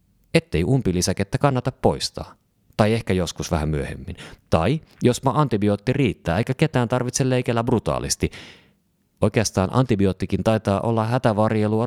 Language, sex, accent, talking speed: Finnish, male, native, 120 wpm